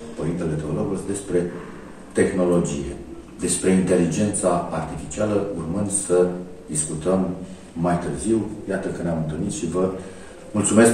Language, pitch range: Romanian, 85-105 Hz